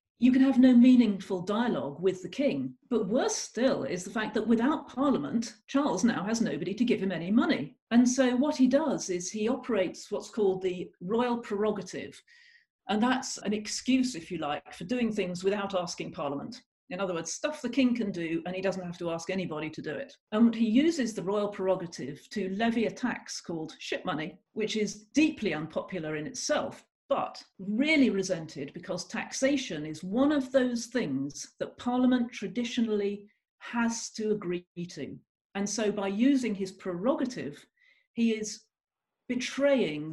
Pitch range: 185-250 Hz